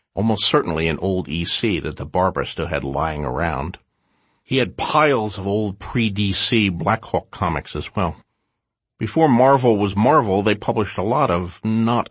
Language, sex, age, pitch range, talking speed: English, male, 50-69, 85-110 Hz, 160 wpm